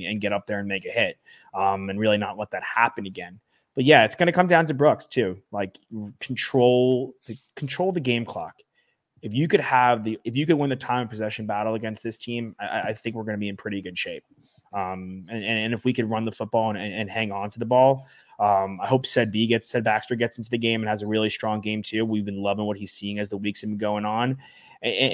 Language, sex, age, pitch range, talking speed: English, male, 20-39, 100-120 Hz, 265 wpm